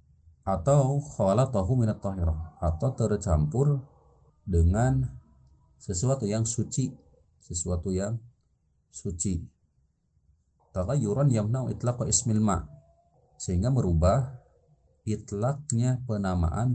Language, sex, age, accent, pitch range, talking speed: Indonesian, male, 40-59, native, 80-120 Hz, 65 wpm